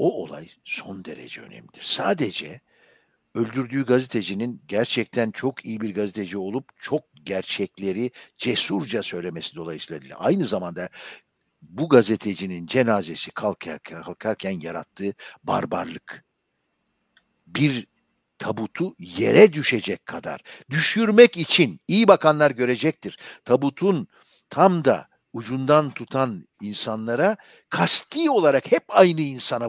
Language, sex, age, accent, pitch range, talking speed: Turkish, male, 60-79, native, 110-160 Hz, 100 wpm